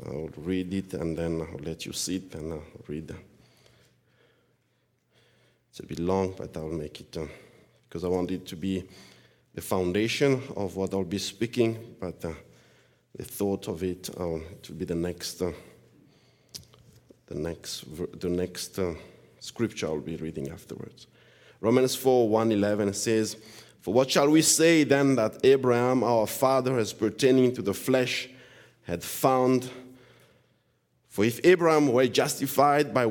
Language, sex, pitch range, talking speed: English, male, 95-130 Hz, 155 wpm